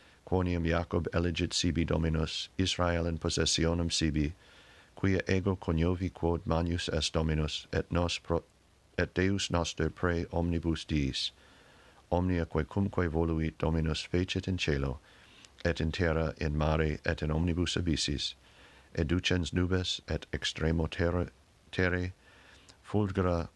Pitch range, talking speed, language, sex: 80-95 Hz, 125 wpm, English, male